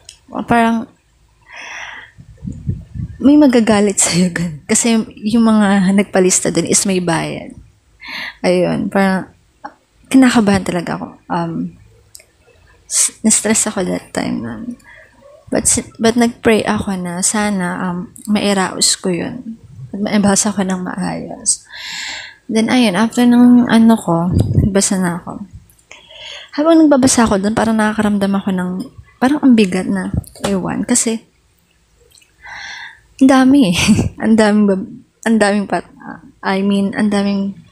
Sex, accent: female, native